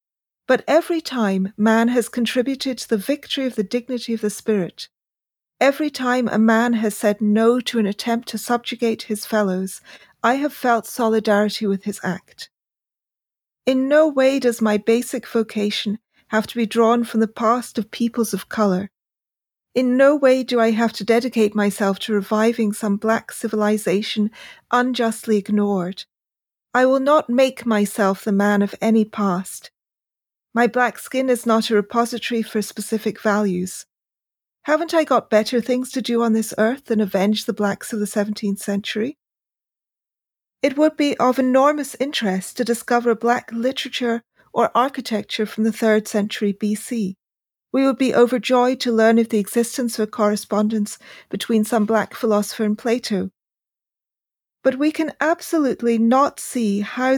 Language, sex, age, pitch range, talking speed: English, female, 40-59, 210-250 Hz, 155 wpm